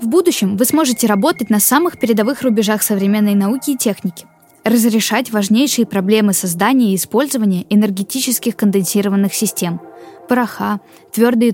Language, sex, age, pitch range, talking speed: Russian, female, 10-29, 200-255 Hz, 125 wpm